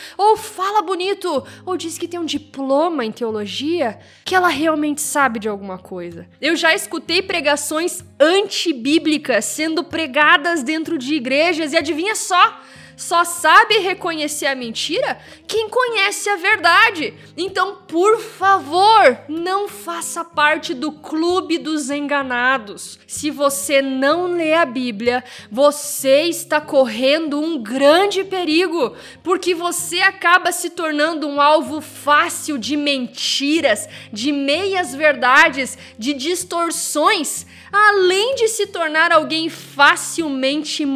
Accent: Brazilian